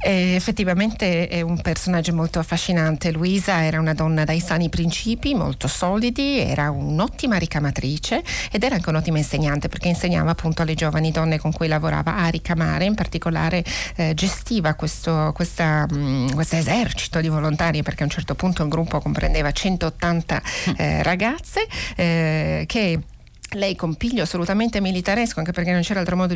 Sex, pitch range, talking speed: female, 155-185 Hz, 155 wpm